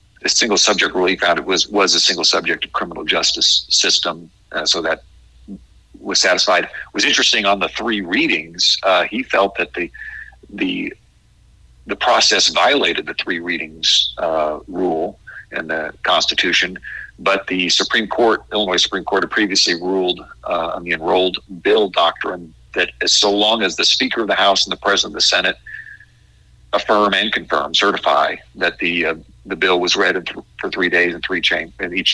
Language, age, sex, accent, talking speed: English, 50-69, male, American, 175 wpm